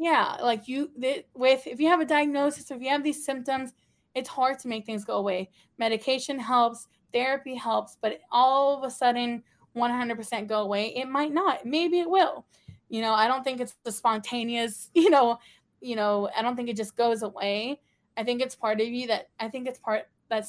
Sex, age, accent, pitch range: female, 20-39, American, 215-260 Hz